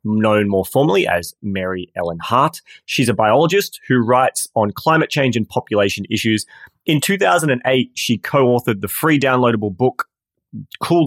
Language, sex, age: English, male, 30-49